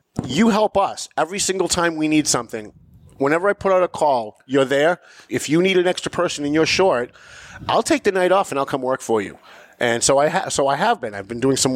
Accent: American